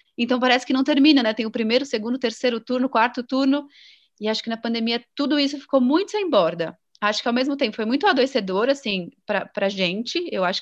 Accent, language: Brazilian, Portuguese